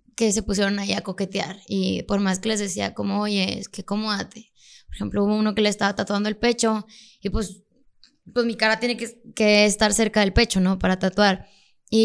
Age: 20-39